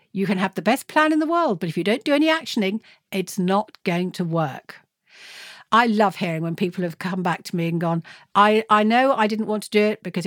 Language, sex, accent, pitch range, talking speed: English, female, British, 170-220 Hz, 250 wpm